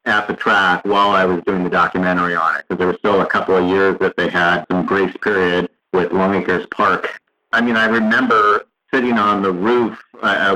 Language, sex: English, male